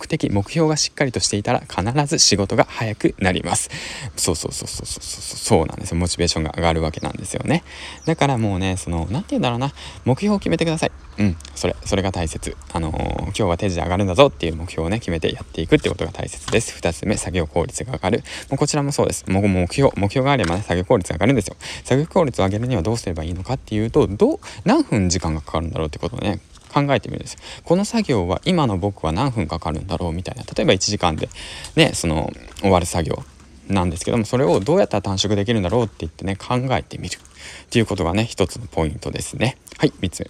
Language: Japanese